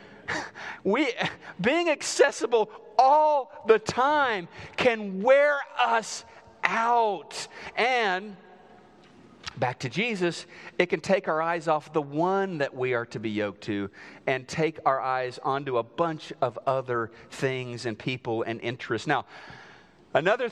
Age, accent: 40-59, American